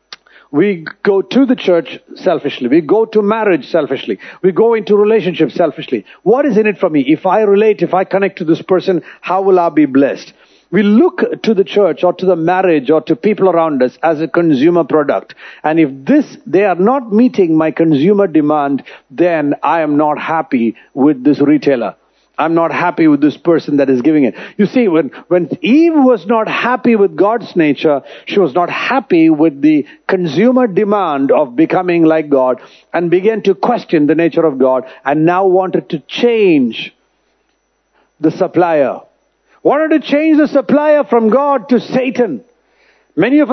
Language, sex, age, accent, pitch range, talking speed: English, male, 50-69, Indian, 160-240 Hz, 180 wpm